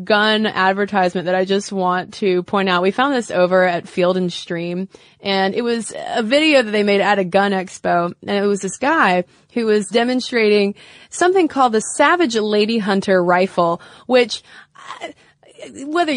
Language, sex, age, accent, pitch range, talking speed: English, female, 20-39, American, 185-230 Hz, 170 wpm